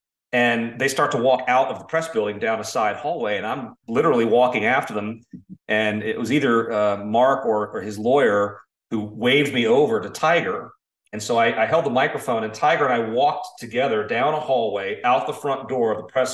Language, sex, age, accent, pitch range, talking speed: English, male, 40-59, American, 110-135 Hz, 215 wpm